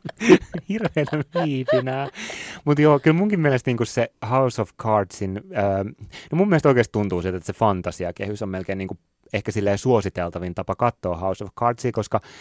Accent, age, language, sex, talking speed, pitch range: native, 30-49, Finnish, male, 160 wpm, 95-120 Hz